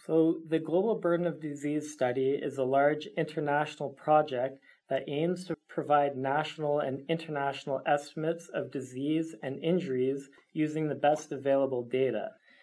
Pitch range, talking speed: 130-155 Hz, 140 wpm